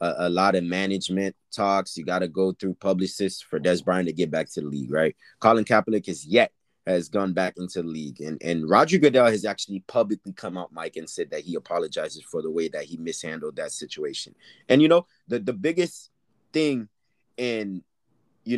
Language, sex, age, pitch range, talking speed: English, male, 30-49, 95-135 Hz, 205 wpm